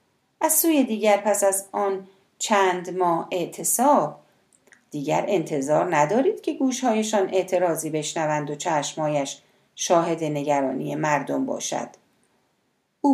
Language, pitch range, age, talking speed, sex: Persian, 165-240 Hz, 40-59, 105 wpm, female